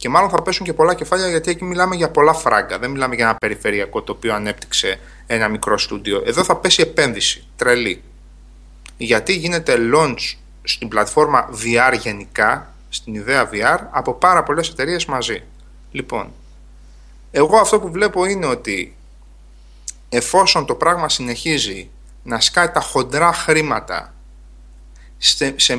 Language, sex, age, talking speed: Greek, male, 30-49, 140 wpm